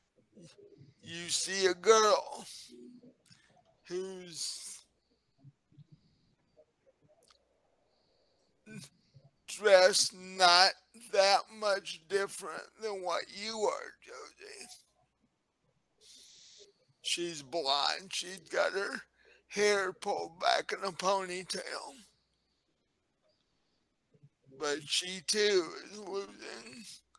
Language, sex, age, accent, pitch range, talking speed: English, male, 60-79, American, 160-220 Hz, 70 wpm